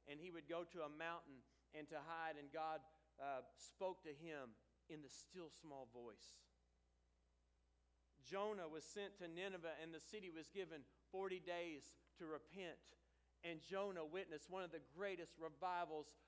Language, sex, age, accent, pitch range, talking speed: English, male, 50-69, American, 145-185 Hz, 160 wpm